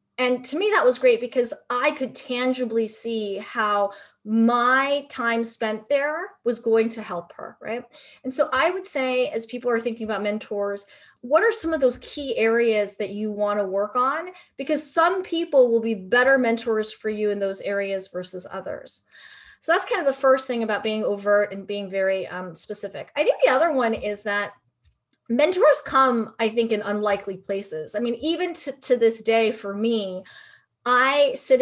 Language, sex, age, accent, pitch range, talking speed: English, female, 30-49, American, 210-265 Hz, 190 wpm